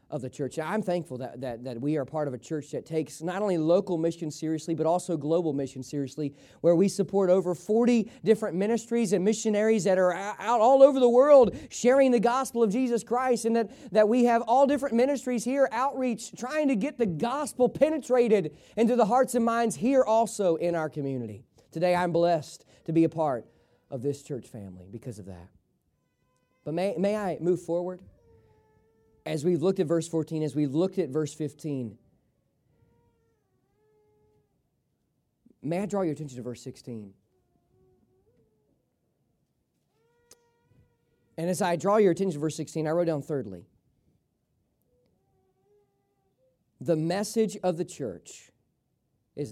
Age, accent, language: 40-59, American, English